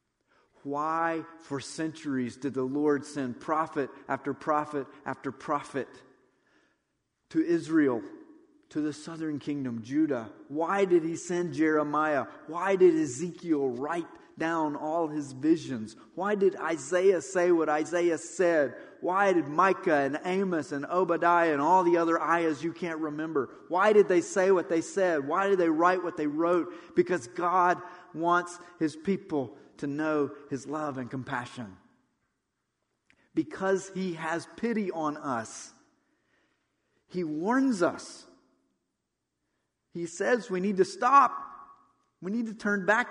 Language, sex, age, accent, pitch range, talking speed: English, male, 30-49, American, 150-185 Hz, 140 wpm